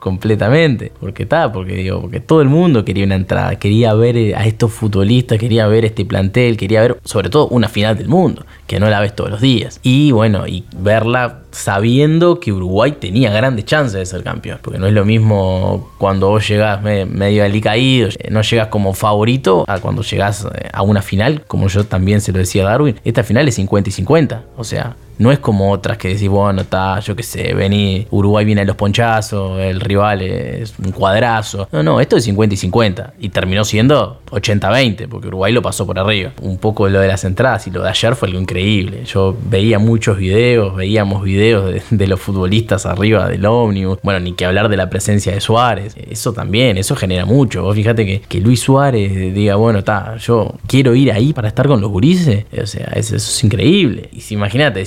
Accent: Argentinian